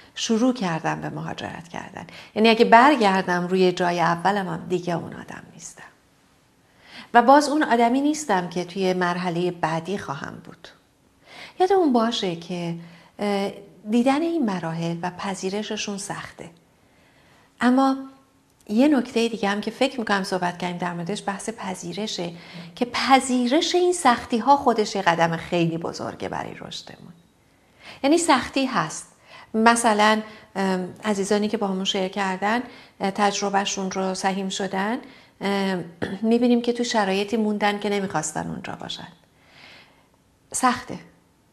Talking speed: 125 wpm